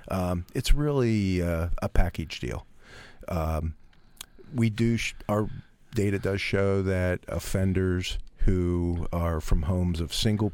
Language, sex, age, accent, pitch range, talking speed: English, male, 50-69, American, 85-105 Hz, 125 wpm